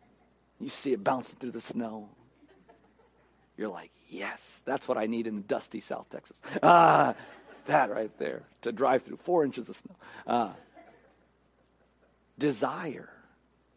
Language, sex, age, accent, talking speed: English, male, 50-69, American, 140 wpm